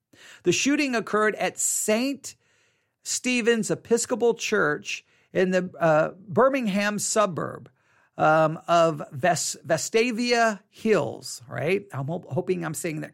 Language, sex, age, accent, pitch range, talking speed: English, male, 50-69, American, 165-220 Hz, 105 wpm